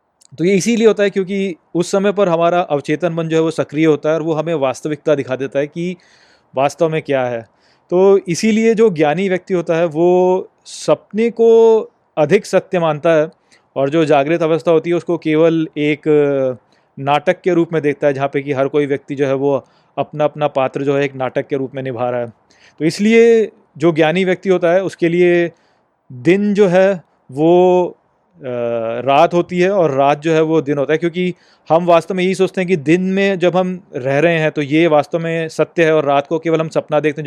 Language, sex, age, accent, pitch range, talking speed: Hindi, male, 30-49, native, 145-175 Hz, 220 wpm